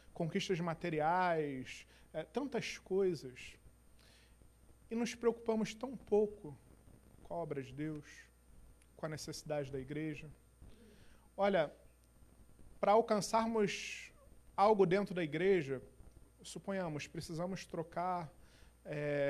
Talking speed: 95 wpm